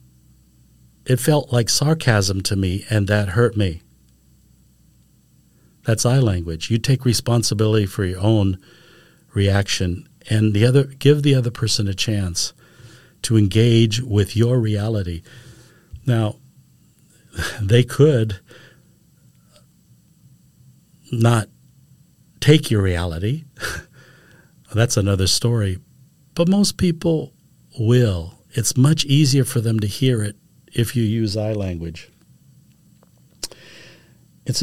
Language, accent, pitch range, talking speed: English, American, 100-135 Hz, 105 wpm